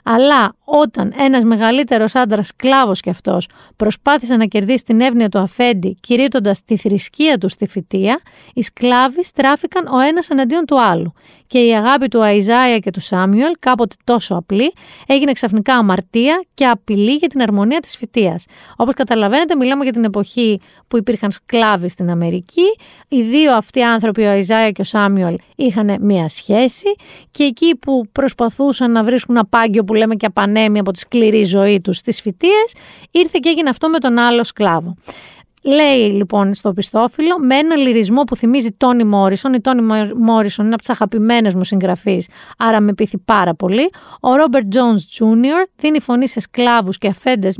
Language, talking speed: Greek, 170 wpm